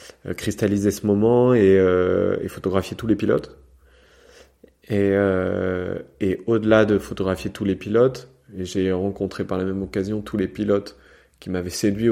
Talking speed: 170 wpm